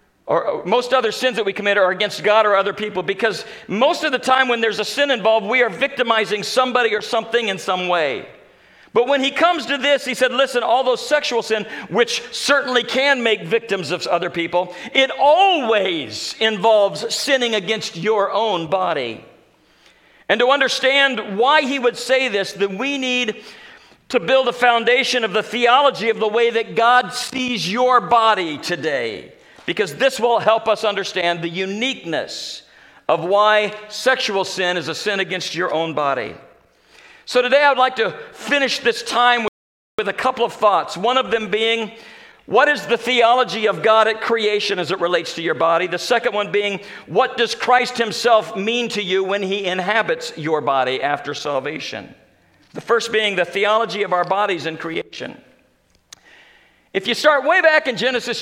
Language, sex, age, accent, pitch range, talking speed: English, male, 50-69, American, 200-255 Hz, 180 wpm